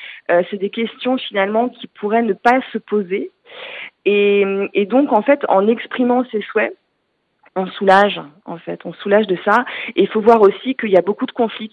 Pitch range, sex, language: 190-240 Hz, female, French